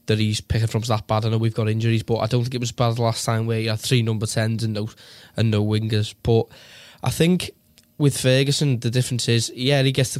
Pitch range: 110-125 Hz